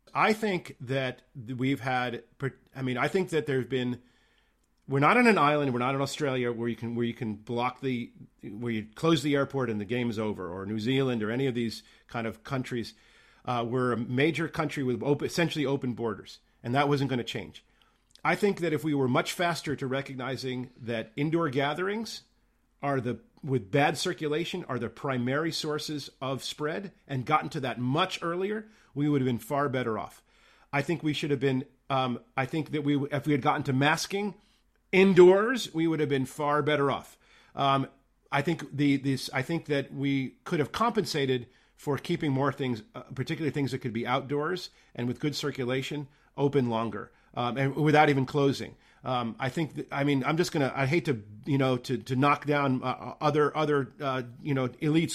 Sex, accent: male, American